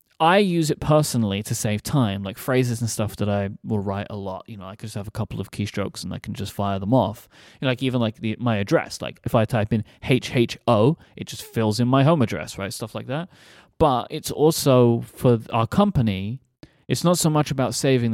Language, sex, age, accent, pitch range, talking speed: English, male, 20-39, British, 110-150 Hz, 230 wpm